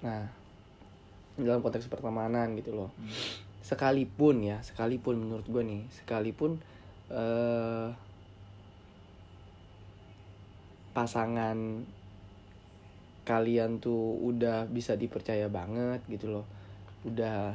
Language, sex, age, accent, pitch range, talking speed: Indonesian, male, 20-39, native, 100-120 Hz, 85 wpm